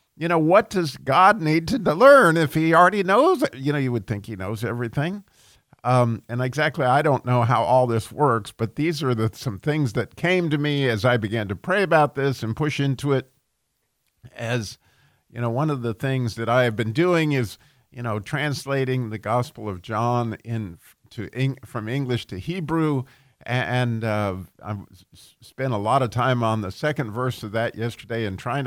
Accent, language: American, English